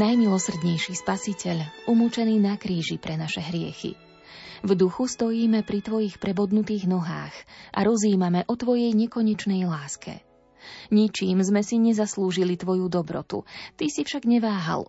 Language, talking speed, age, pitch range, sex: Slovak, 125 wpm, 20-39, 180-220 Hz, female